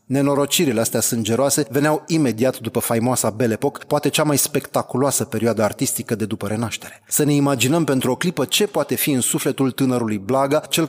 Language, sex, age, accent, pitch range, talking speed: Romanian, male, 30-49, native, 120-150 Hz, 170 wpm